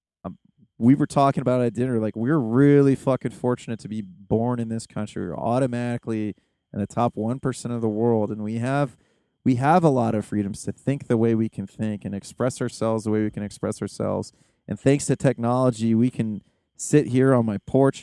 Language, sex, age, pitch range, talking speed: English, male, 30-49, 110-145 Hz, 215 wpm